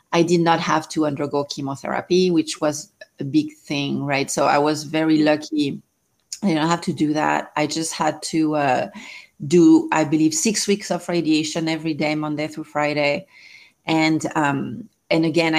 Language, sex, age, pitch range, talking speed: English, female, 30-49, 155-175 Hz, 175 wpm